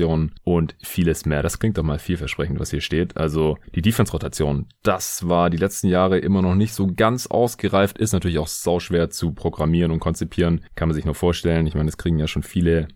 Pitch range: 80-100 Hz